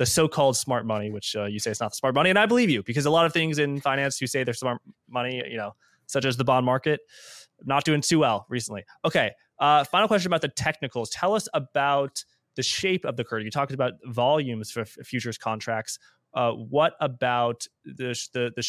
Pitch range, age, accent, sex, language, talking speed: 115-140 Hz, 20-39, American, male, English, 230 wpm